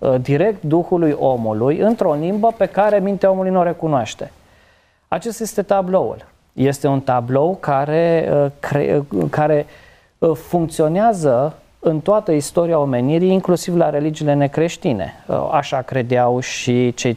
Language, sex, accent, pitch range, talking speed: Romanian, male, native, 130-175 Hz, 115 wpm